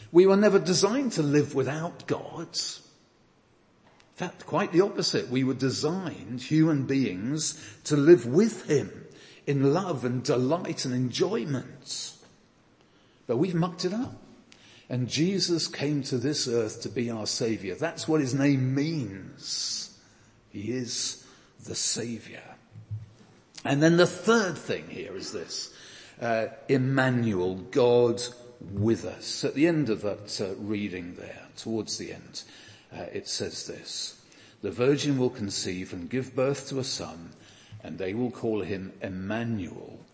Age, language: 50-69, English